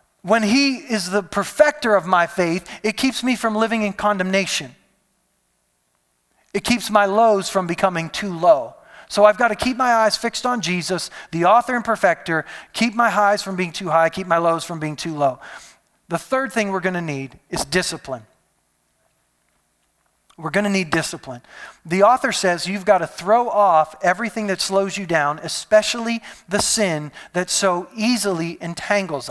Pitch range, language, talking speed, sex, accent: 170-220 Hz, English, 170 wpm, male, American